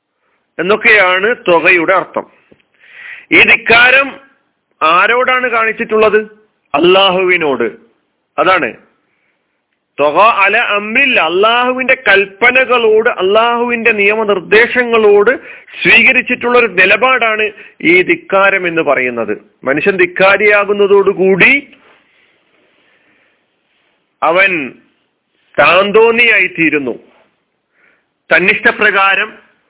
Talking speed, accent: 55 wpm, native